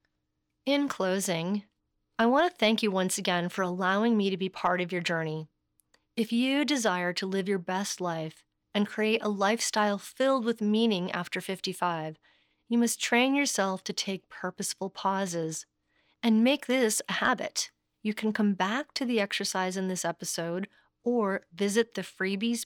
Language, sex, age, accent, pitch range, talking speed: English, female, 30-49, American, 180-225 Hz, 165 wpm